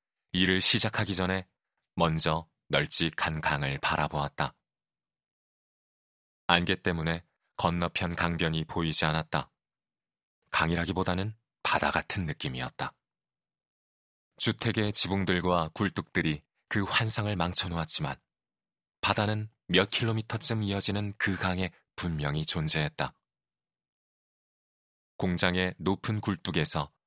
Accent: native